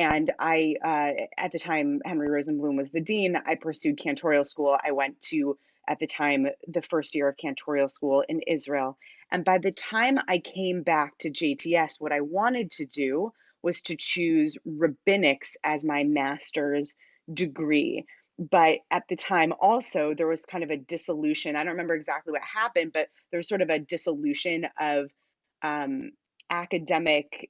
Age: 30-49